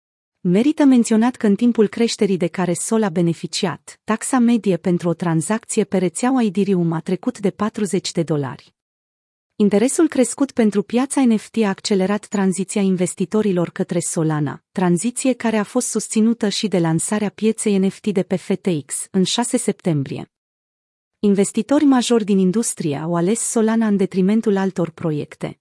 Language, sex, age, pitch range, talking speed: Romanian, female, 30-49, 175-220 Hz, 150 wpm